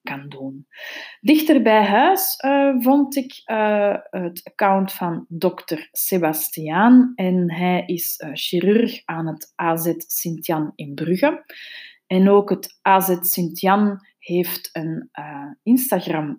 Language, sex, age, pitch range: Dutch, female, 20-39, 170-240 Hz